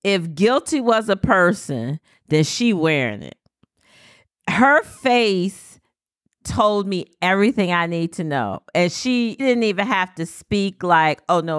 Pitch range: 175-225 Hz